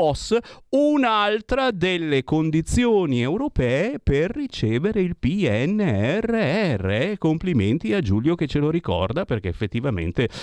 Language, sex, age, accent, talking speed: Italian, male, 50-69, native, 100 wpm